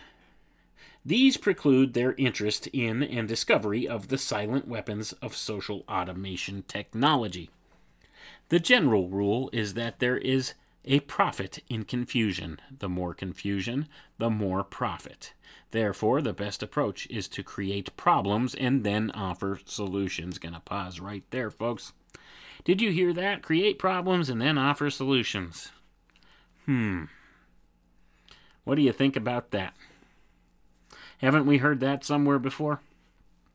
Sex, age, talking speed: male, 30-49, 130 wpm